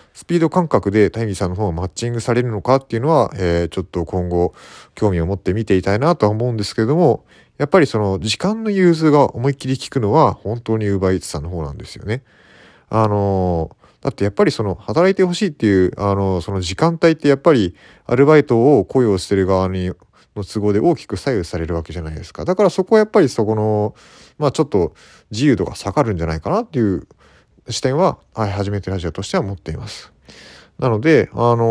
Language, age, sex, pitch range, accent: Japanese, 30-49, male, 95-145 Hz, native